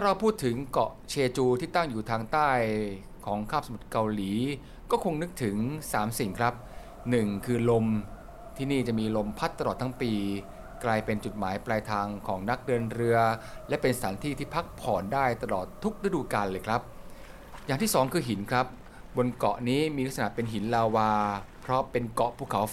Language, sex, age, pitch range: Thai, male, 20-39, 110-140 Hz